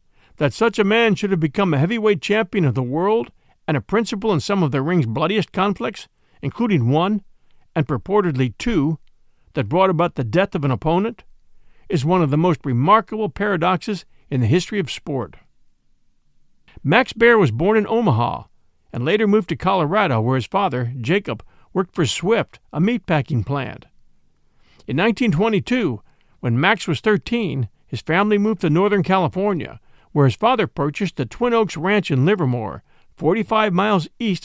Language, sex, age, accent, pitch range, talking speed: English, male, 50-69, American, 140-210 Hz, 165 wpm